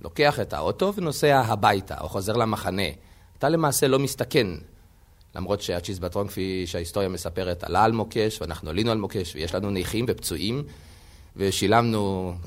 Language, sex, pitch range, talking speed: Hebrew, male, 90-140 Hz, 140 wpm